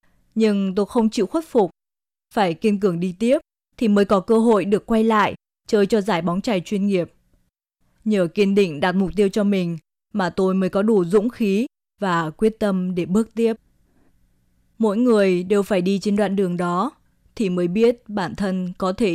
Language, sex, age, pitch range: Chinese, female, 20-39, 185-215 Hz